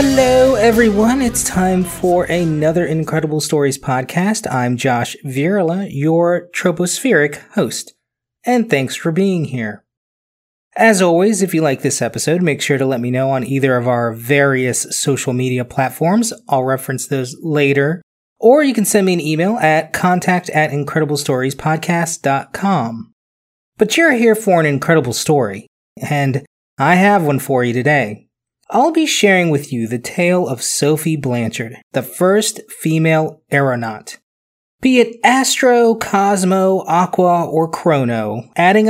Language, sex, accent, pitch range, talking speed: English, male, American, 135-190 Hz, 140 wpm